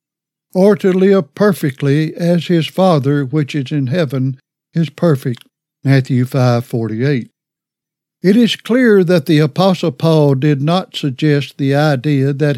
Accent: American